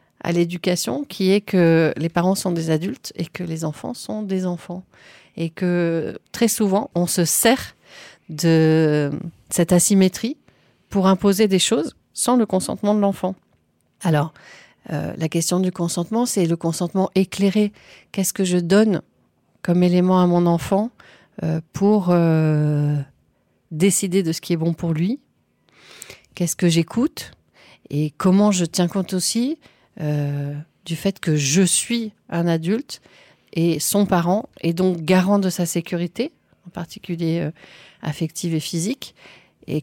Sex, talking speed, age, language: female, 150 wpm, 40-59, French